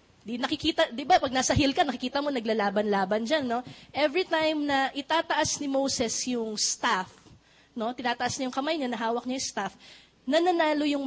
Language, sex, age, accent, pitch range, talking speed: English, female, 20-39, Filipino, 235-300 Hz, 190 wpm